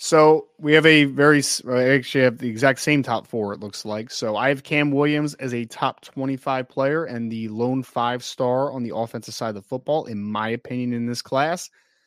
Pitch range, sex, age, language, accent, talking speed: 125-150 Hz, male, 20-39, English, American, 220 wpm